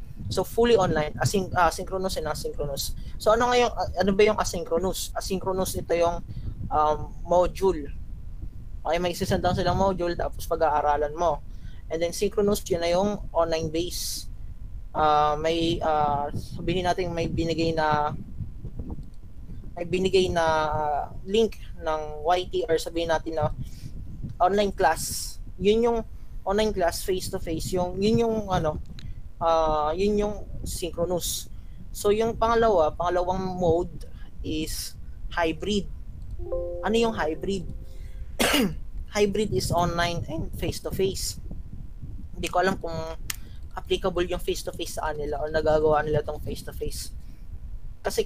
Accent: native